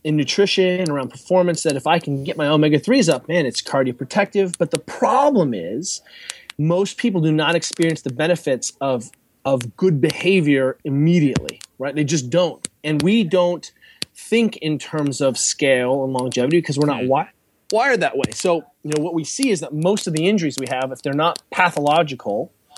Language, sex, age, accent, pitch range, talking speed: English, male, 30-49, American, 140-175 Hz, 185 wpm